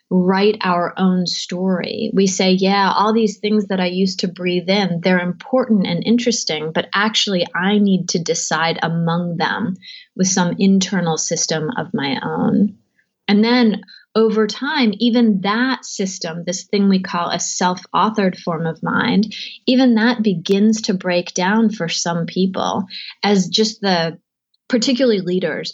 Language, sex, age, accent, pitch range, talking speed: English, female, 30-49, American, 180-215 Hz, 150 wpm